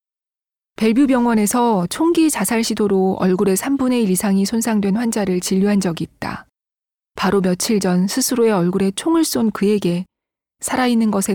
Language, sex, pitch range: Korean, female, 180-230 Hz